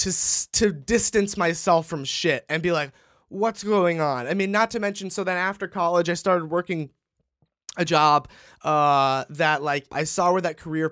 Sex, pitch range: male, 150-195 Hz